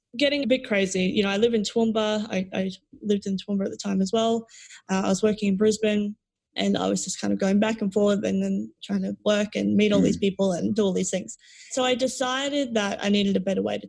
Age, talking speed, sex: 20-39, 265 wpm, female